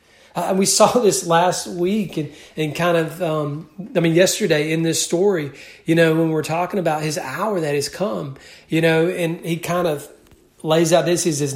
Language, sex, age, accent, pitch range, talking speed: English, male, 40-59, American, 155-200 Hz, 210 wpm